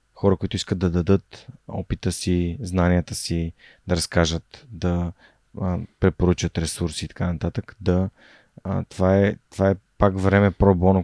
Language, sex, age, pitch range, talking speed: Bulgarian, male, 30-49, 90-105 Hz, 135 wpm